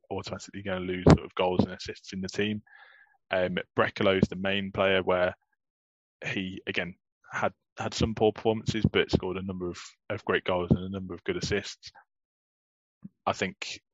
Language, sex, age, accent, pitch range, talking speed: English, male, 20-39, British, 95-105 Hz, 180 wpm